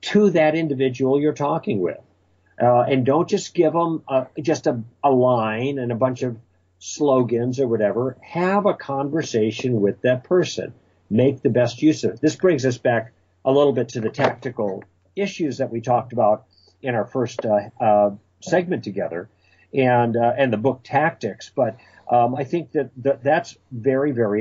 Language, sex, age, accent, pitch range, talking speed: English, male, 50-69, American, 115-145 Hz, 180 wpm